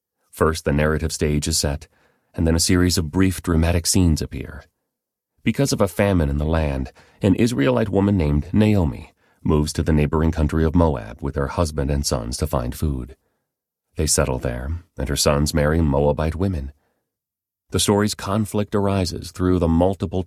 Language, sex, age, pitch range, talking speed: English, male, 40-59, 75-95 Hz, 170 wpm